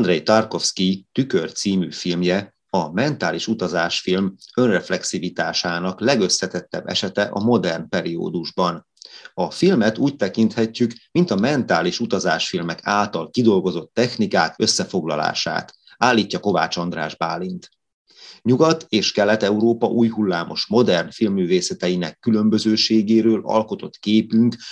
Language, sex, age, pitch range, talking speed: Hungarian, male, 30-49, 95-115 Hz, 100 wpm